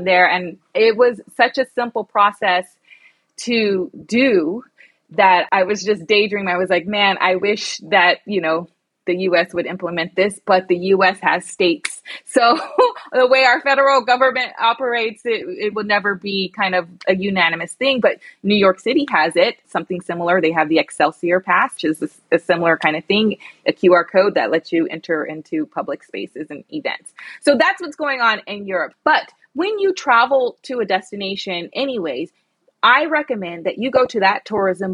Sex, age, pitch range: female, 20-39, 175-245 Hz